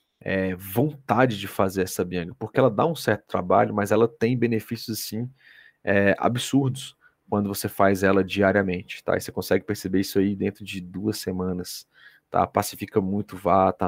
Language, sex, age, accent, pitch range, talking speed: Portuguese, male, 30-49, Brazilian, 95-115 Hz, 165 wpm